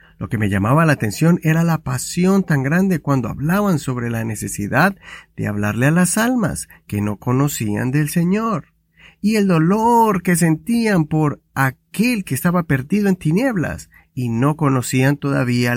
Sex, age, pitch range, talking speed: male, 50-69, 125-180 Hz, 160 wpm